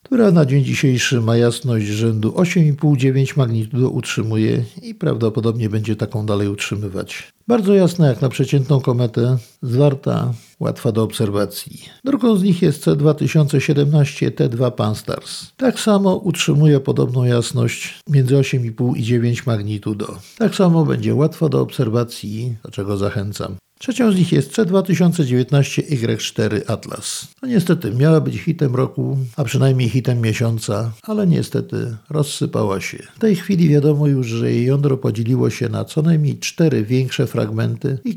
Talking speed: 140 wpm